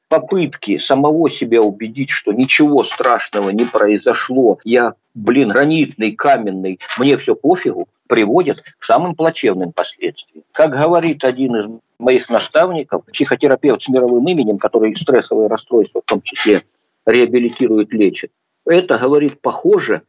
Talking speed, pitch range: 125 wpm, 125-170 Hz